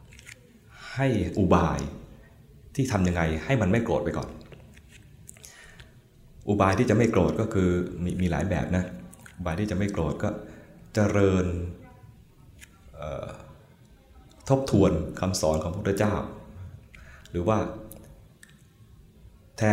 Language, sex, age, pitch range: Thai, male, 20-39, 80-105 Hz